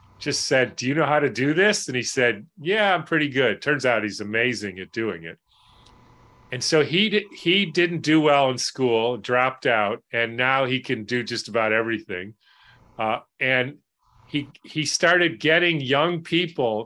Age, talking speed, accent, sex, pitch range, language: 40-59, 180 wpm, American, male, 125-150 Hz, English